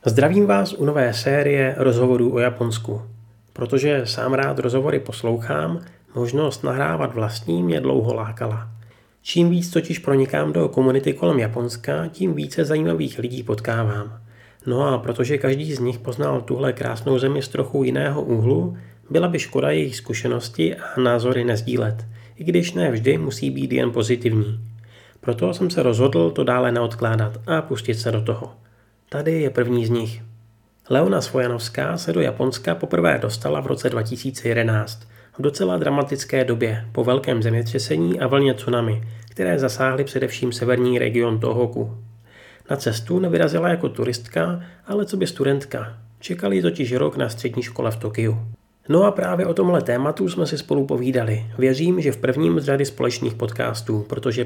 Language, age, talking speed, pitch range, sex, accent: Czech, 30-49, 155 wpm, 110-130 Hz, male, native